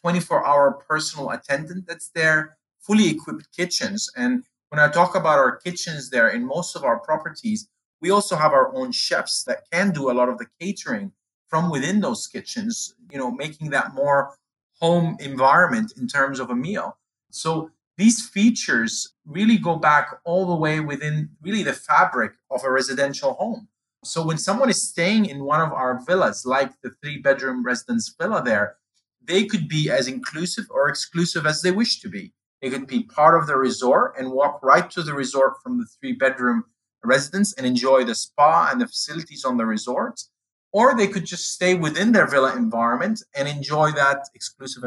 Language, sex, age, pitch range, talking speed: English, male, 30-49, 140-205 Hz, 180 wpm